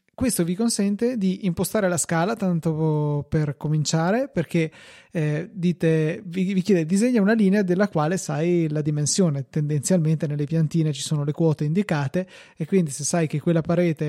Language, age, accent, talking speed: Italian, 20-39, native, 165 wpm